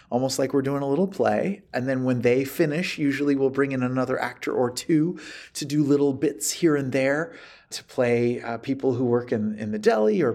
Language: English